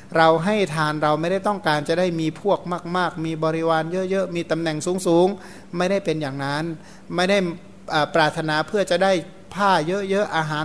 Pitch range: 155-185 Hz